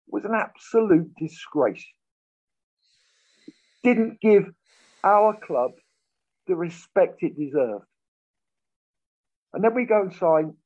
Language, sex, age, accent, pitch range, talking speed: English, male, 50-69, British, 160-215 Hz, 100 wpm